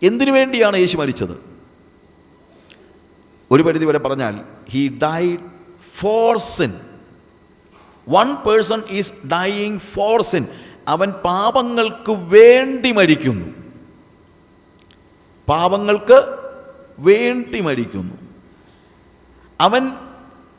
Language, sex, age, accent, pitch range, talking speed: Malayalam, male, 50-69, native, 125-195 Hz, 60 wpm